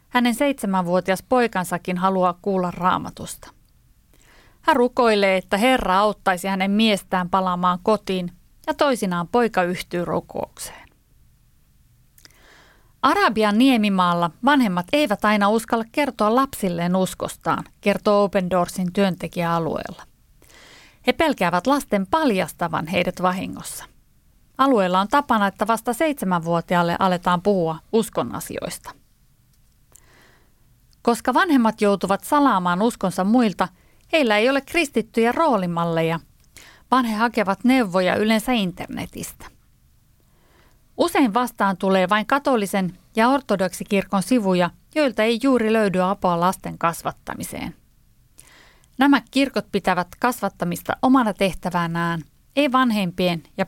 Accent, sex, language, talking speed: native, female, Finnish, 100 wpm